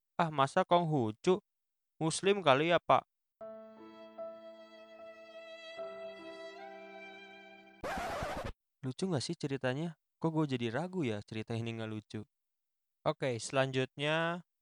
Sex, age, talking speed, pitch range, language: male, 20-39, 95 wpm, 120-145 Hz, Indonesian